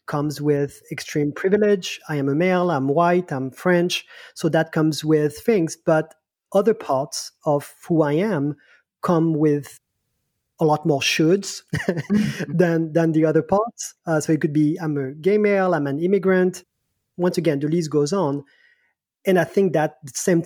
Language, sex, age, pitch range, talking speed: English, male, 30-49, 145-170 Hz, 175 wpm